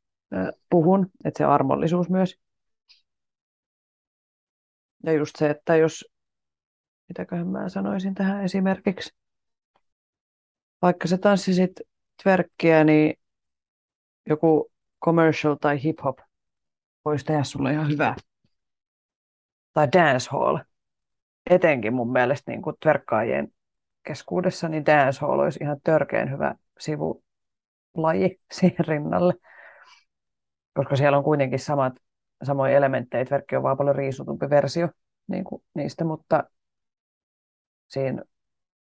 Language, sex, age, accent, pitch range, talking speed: Finnish, female, 30-49, native, 135-180 Hz, 100 wpm